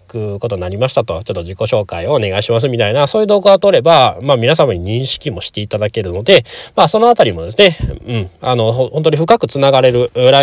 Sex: male